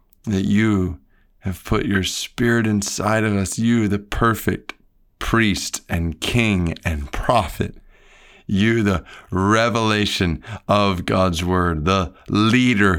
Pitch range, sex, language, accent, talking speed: 90-105 Hz, male, English, American, 115 wpm